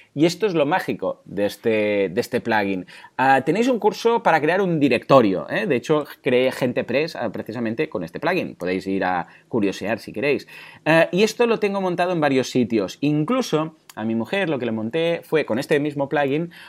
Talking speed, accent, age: 200 wpm, Spanish, 30-49